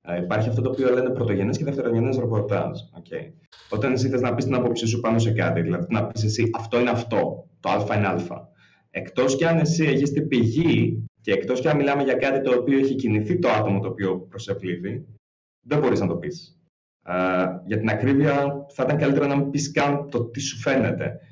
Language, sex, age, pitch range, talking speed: Greek, male, 20-39, 105-145 Hz, 215 wpm